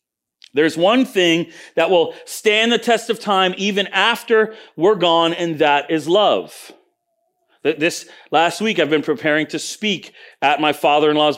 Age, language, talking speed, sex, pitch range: 40-59, English, 155 wpm, male, 170-225 Hz